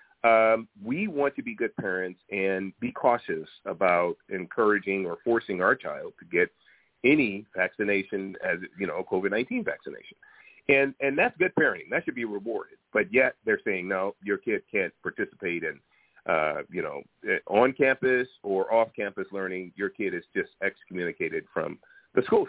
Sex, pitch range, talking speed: male, 95-145 Hz, 165 wpm